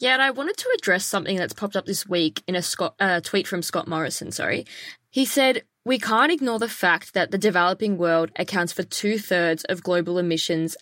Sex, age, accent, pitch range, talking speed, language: female, 20-39, Australian, 170-205 Hz, 205 wpm, English